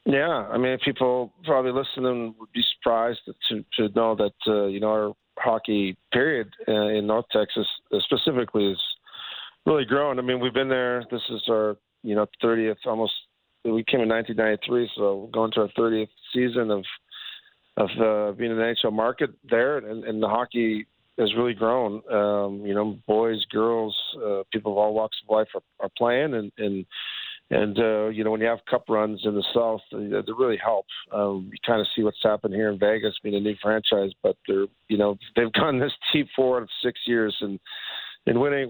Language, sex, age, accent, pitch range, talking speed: English, male, 40-59, American, 105-120 Hz, 195 wpm